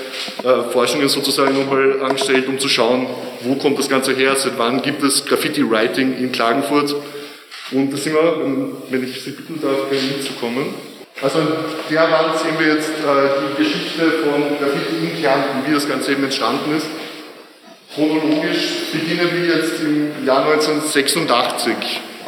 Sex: male